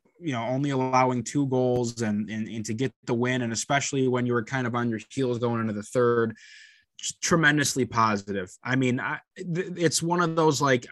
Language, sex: English, male